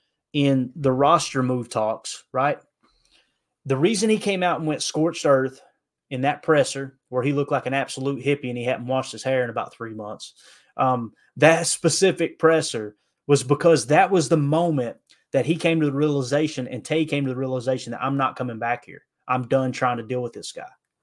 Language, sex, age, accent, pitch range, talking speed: English, male, 30-49, American, 130-160 Hz, 205 wpm